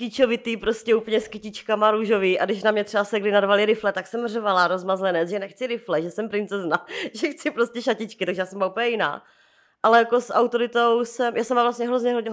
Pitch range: 185-230 Hz